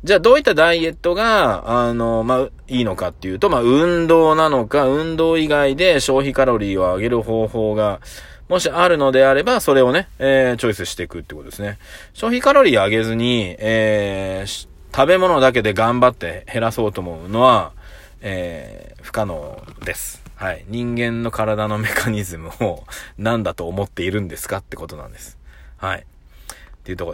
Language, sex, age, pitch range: Japanese, male, 20-39, 90-125 Hz